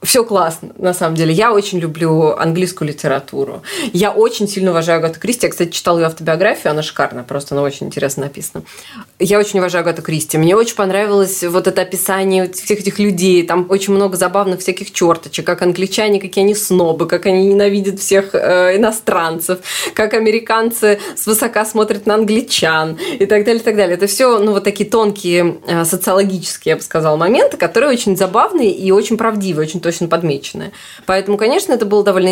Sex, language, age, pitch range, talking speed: female, Russian, 20-39, 170-210 Hz, 180 wpm